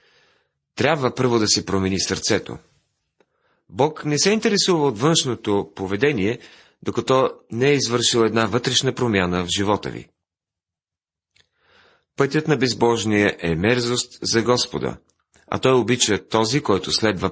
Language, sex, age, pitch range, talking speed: Bulgarian, male, 40-59, 95-130 Hz, 125 wpm